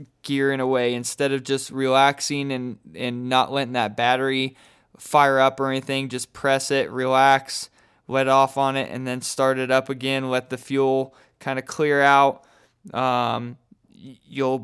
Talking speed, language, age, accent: 170 wpm, English, 20-39, American